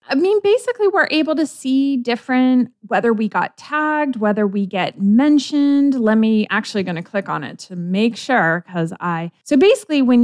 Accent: American